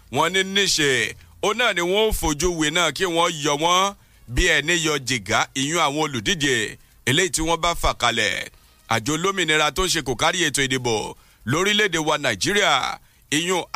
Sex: male